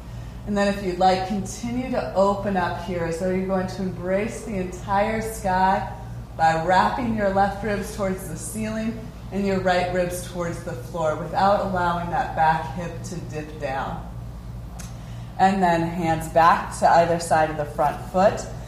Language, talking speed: English, 165 wpm